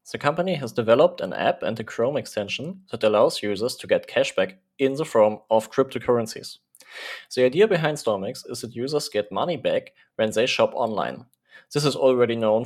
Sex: male